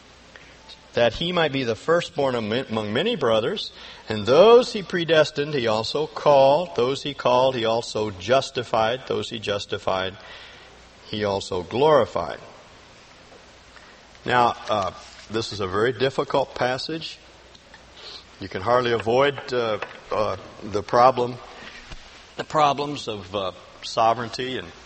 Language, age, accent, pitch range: English, 50-69, American, 105-130 Hz